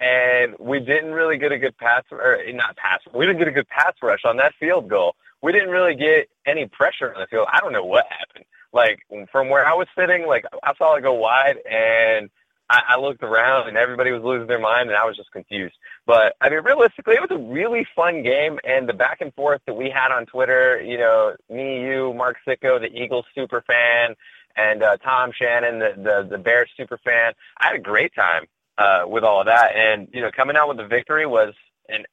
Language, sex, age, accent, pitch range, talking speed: English, male, 20-39, American, 115-150 Hz, 230 wpm